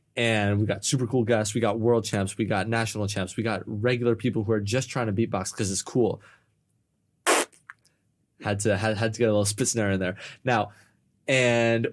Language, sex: English, male